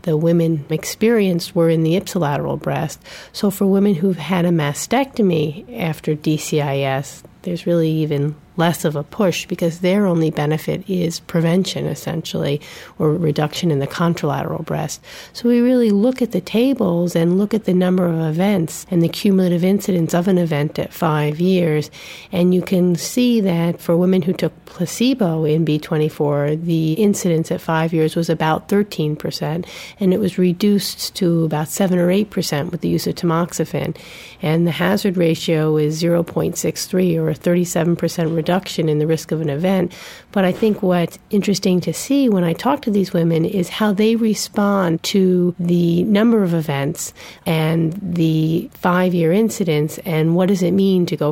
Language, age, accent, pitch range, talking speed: English, 40-59, American, 160-190 Hz, 170 wpm